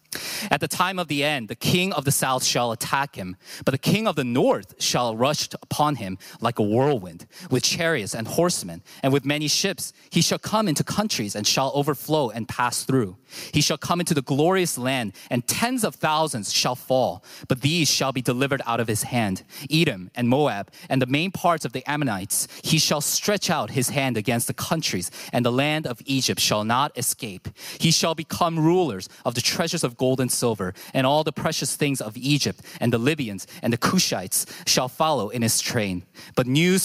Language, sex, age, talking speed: English, male, 20-39, 205 wpm